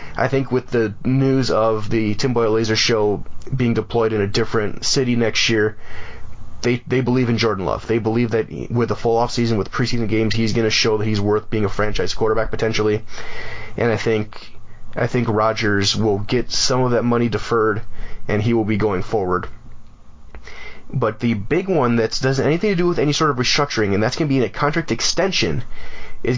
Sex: male